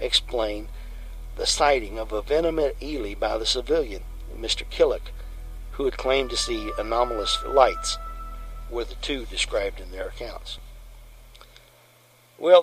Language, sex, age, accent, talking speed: English, male, 60-79, American, 135 wpm